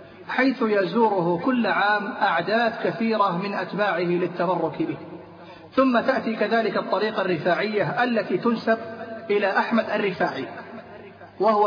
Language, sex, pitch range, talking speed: Arabic, male, 170-210 Hz, 110 wpm